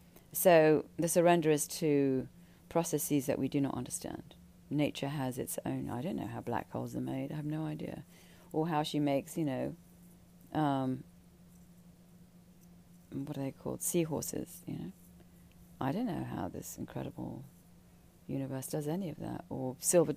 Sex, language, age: female, English, 40-59